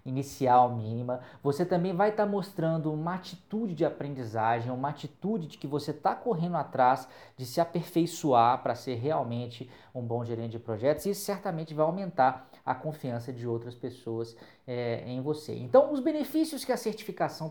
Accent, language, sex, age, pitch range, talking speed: Brazilian, Portuguese, male, 20-39, 130-200 Hz, 170 wpm